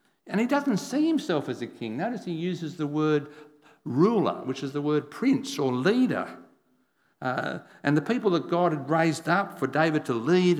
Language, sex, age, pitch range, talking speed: English, male, 60-79, 125-175 Hz, 190 wpm